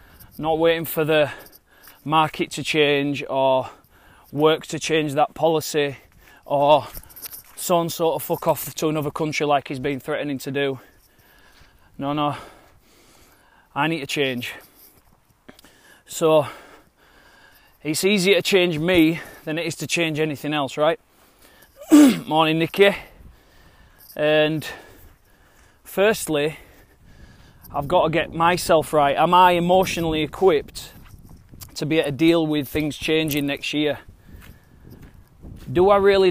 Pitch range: 140-165 Hz